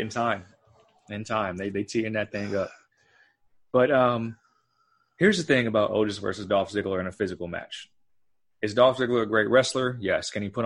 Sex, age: male, 20-39